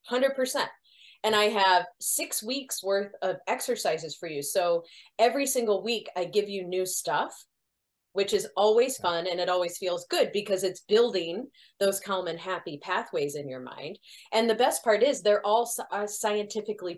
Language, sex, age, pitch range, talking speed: English, female, 30-49, 175-245 Hz, 175 wpm